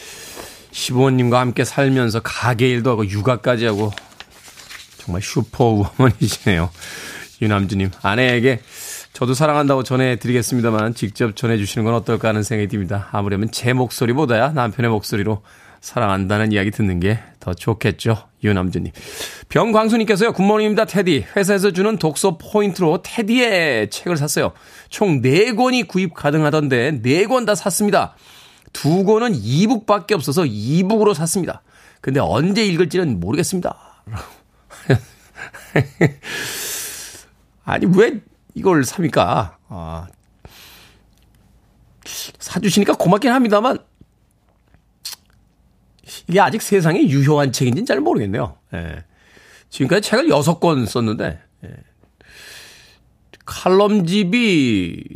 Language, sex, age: Korean, male, 20-39